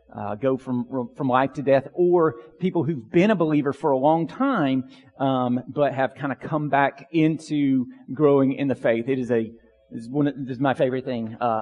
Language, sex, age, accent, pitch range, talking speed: English, male, 40-59, American, 140-185 Hz, 210 wpm